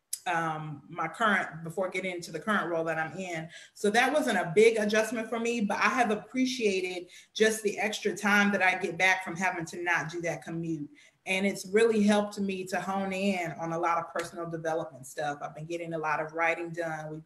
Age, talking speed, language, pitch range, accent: 30-49, 220 wpm, English, 170-205 Hz, American